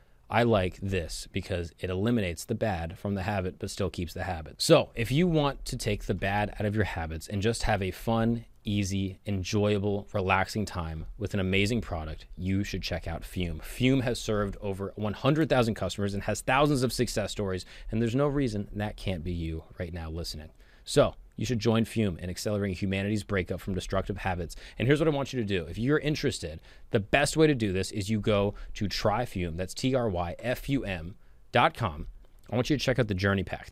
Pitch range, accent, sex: 95-115 Hz, American, male